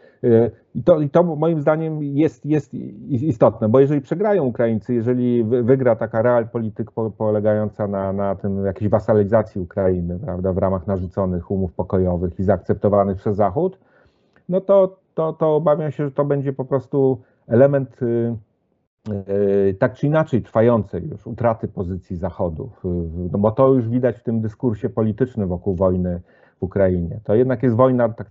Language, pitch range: English, 100-130 Hz